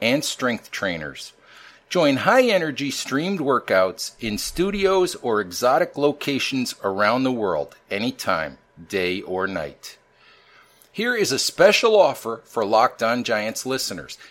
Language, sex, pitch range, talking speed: English, male, 120-180 Hz, 120 wpm